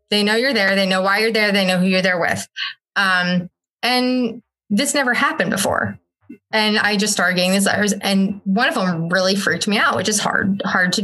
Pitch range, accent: 180-215 Hz, American